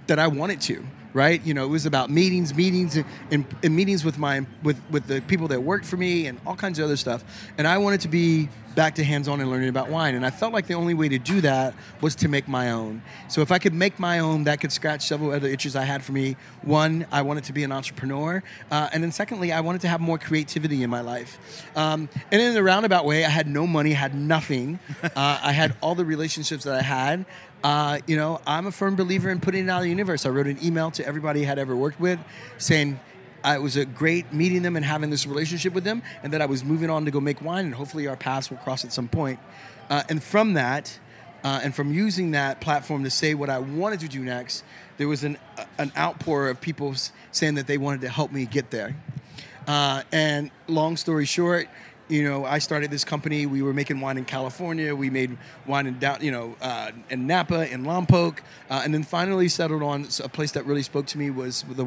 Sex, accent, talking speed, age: male, American, 240 wpm, 30-49